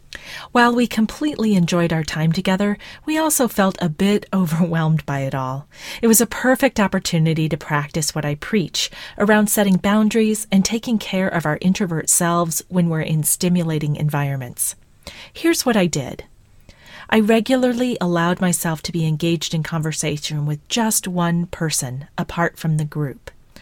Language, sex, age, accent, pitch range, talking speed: English, female, 40-59, American, 160-210 Hz, 160 wpm